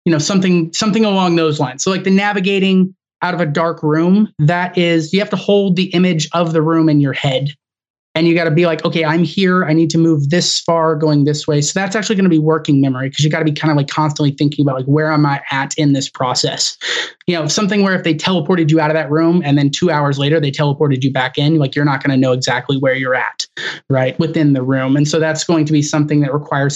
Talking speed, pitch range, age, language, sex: 270 wpm, 140-170 Hz, 20-39, English, male